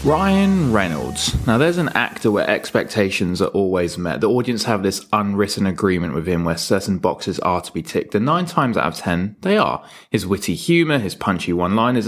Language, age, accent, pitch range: English, 20-39, British, 95-135 Hz